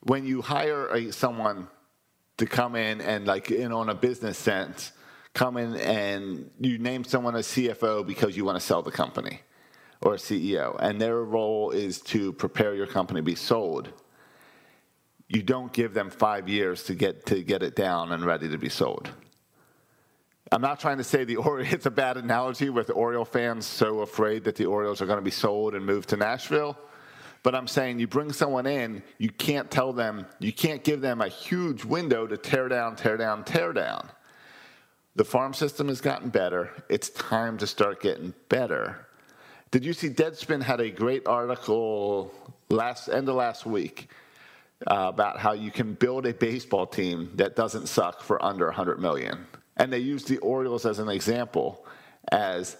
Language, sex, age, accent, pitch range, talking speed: English, male, 40-59, American, 105-130 Hz, 185 wpm